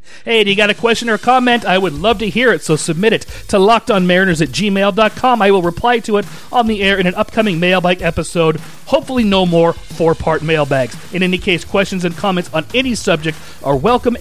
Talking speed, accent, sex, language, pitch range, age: 220 wpm, American, male, English, 160-210 Hz, 40-59